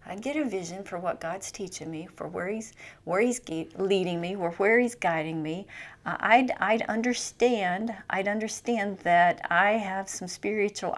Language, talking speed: English, 180 wpm